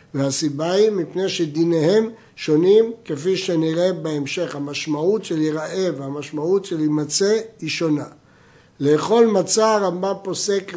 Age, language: 60-79, Hebrew